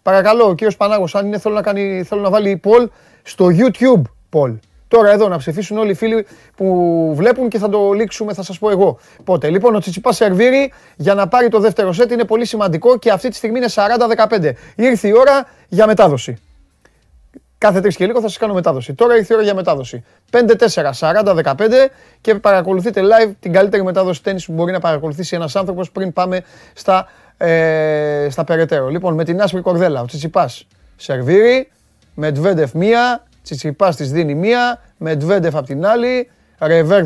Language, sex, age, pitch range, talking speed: Greek, male, 30-49, 155-220 Hz, 175 wpm